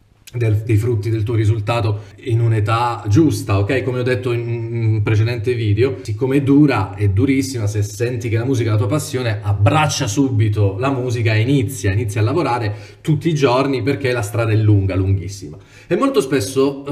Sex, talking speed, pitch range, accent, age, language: male, 180 wpm, 105-145 Hz, native, 30-49, Italian